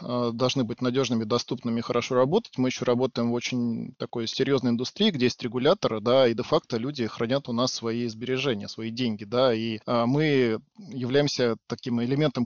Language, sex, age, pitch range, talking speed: Russian, male, 20-39, 120-150 Hz, 165 wpm